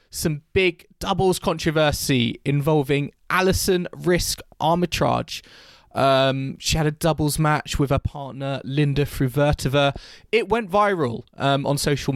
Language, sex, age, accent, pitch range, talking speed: English, male, 20-39, British, 120-160 Hz, 125 wpm